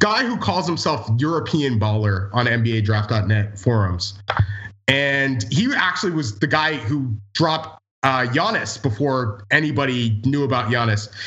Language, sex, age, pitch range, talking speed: English, male, 30-49, 115-160 Hz, 130 wpm